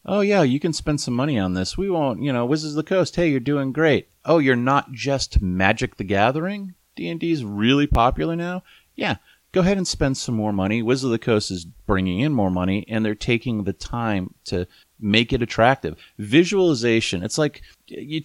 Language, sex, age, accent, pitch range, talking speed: English, male, 30-49, American, 95-125 Hz, 205 wpm